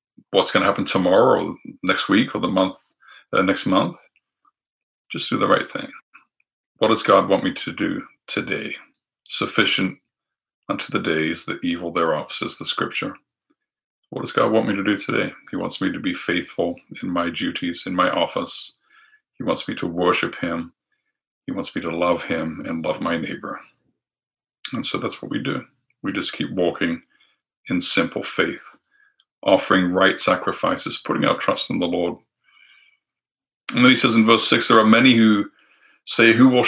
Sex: male